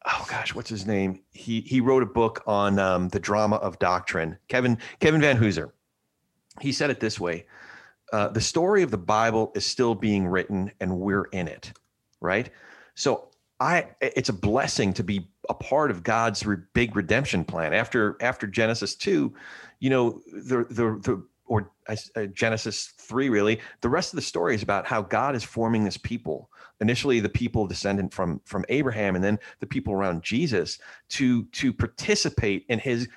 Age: 40-59